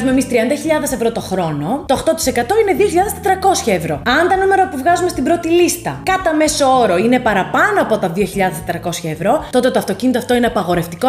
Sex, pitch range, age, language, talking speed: female, 200-265 Hz, 20-39, Greek, 180 wpm